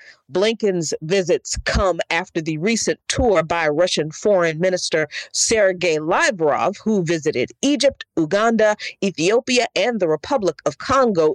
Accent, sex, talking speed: American, female, 120 wpm